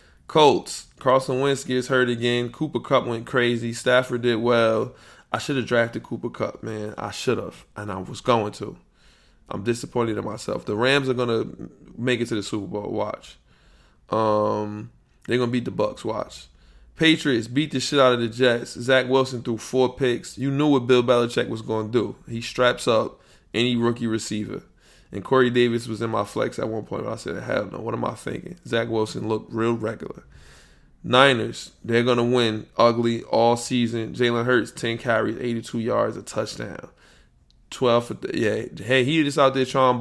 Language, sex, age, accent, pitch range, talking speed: English, male, 20-39, American, 110-125 Hz, 190 wpm